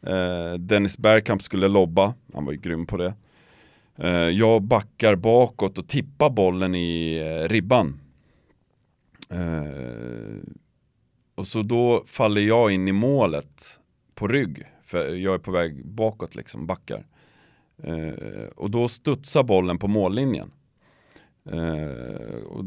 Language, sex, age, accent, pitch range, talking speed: Swedish, male, 40-59, native, 85-120 Hz, 115 wpm